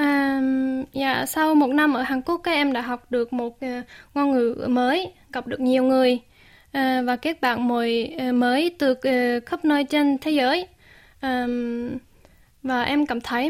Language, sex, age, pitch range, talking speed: Vietnamese, female, 10-29, 245-290 Hz, 160 wpm